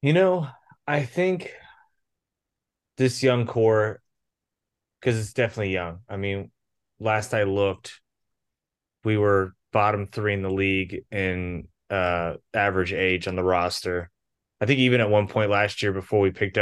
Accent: American